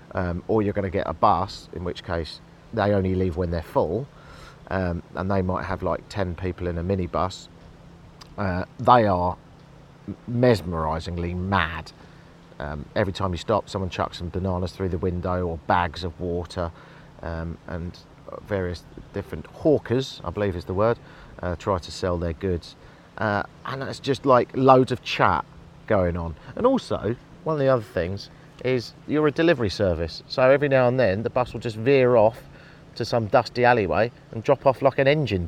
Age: 40-59